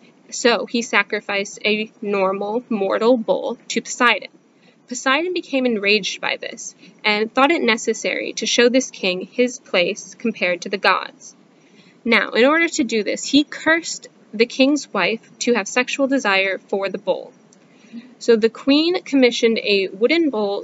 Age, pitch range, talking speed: 10-29, 210-260 Hz, 155 wpm